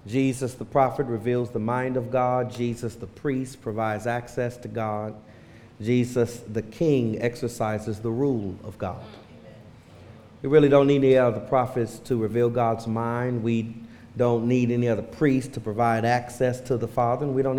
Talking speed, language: 165 wpm, English